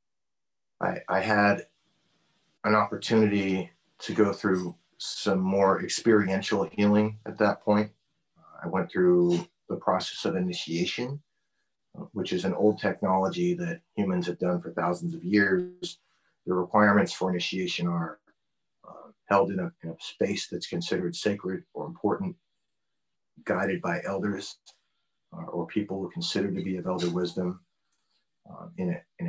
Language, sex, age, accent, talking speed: English, male, 40-59, American, 145 wpm